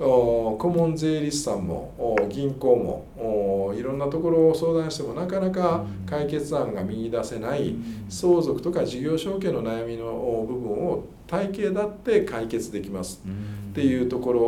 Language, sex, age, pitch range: Japanese, male, 50-69, 115-170 Hz